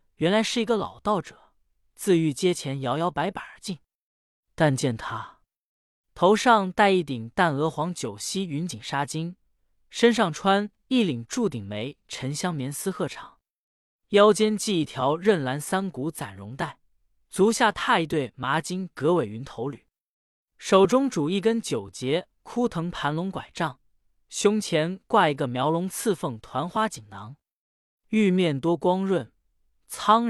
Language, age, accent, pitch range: Chinese, 20-39, native, 135-210 Hz